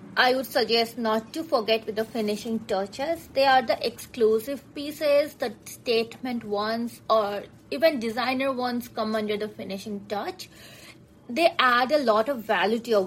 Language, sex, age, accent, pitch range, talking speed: English, female, 20-39, Indian, 215-260 Hz, 160 wpm